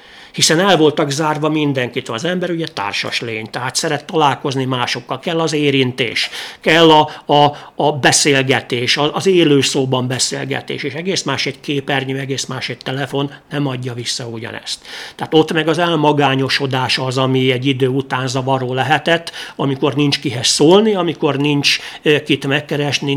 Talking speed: 155 wpm